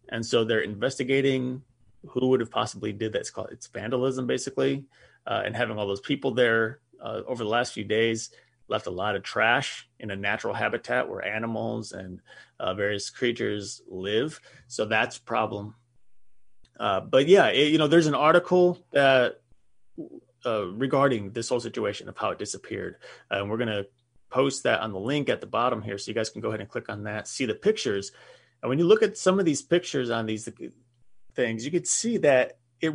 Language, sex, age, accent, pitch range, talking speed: English, male, 30-49, American, 110-135 Hz, 200 wpm